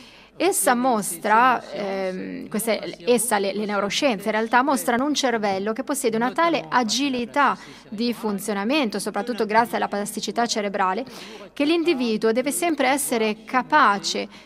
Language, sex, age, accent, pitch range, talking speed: Italian, female, 30-49, native, 205-265 Hz, 120 wpm